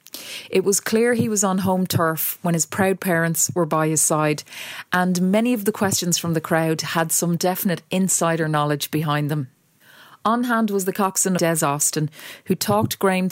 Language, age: English, 30-49